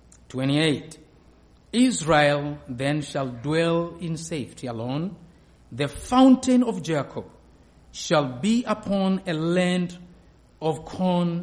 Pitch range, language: 115-165 Hz, English